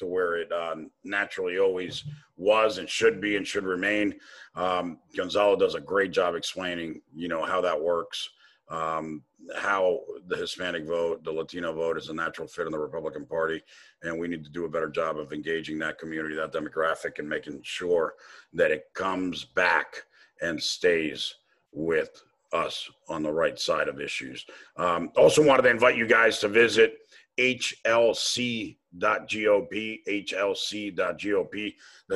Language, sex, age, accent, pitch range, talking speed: English, male, 50-69, American, 90-150 Hz, 155 wpm